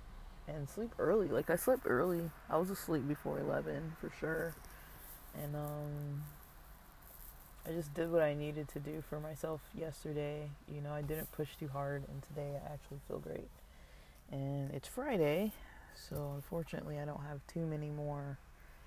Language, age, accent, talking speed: English, 20-39, American, 160 wpm